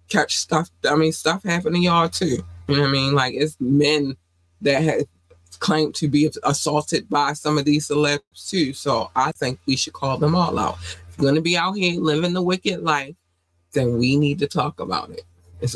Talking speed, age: 215 wpm, 20-39